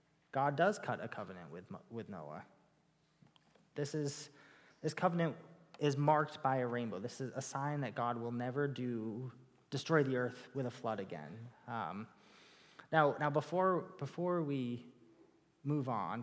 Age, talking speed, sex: 30-49, 150 wpm, male